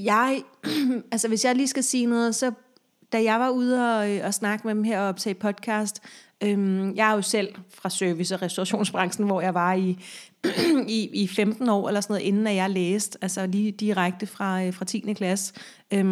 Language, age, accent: Danish, 30-49, native